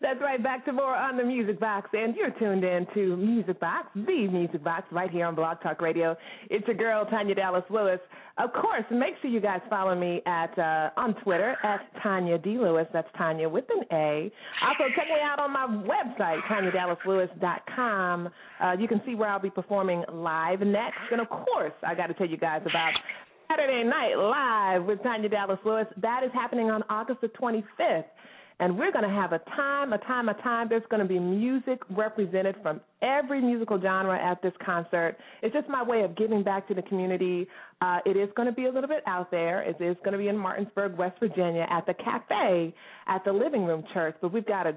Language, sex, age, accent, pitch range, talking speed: English, female, 30-49, American, 175-225 Hz, 210 wpm